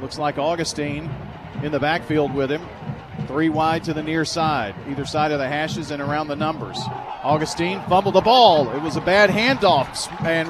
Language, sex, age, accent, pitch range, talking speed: English, male, 40-59, American, 150-180 Hz, 190 wpm